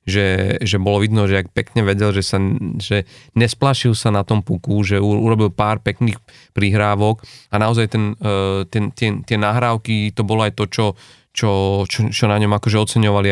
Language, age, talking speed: Slovak, 30-49, 195 wpm